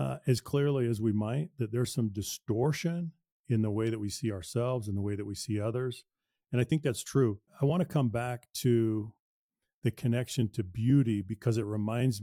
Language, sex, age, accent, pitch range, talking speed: English, male, 40-59, American, 110-130 Hz, 205 wpm